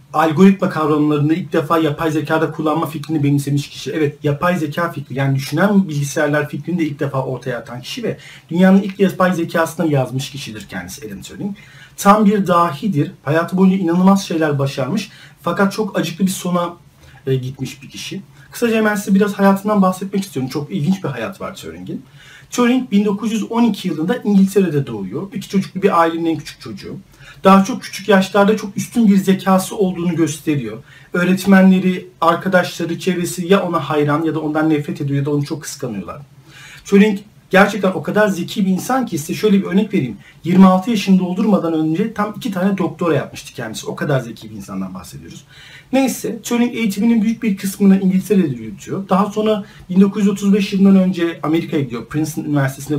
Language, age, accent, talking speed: Turkish, 40-59, native, 165 wpm